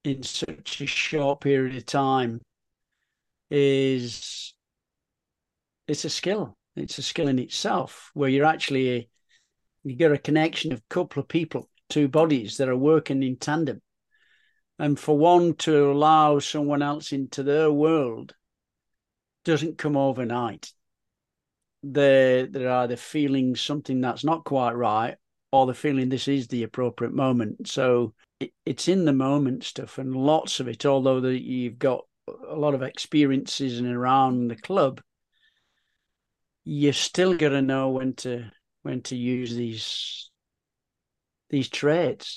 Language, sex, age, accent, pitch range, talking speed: English, male, 50-69, British, 125-150 Hz, 140 wpm